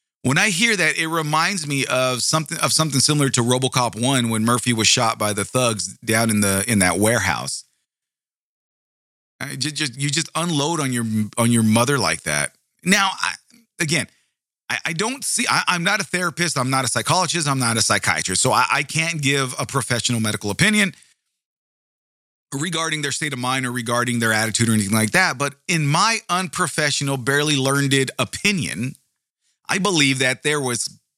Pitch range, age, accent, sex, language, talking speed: 120-160 Hz, 40-59, American, male, English, 185 wpm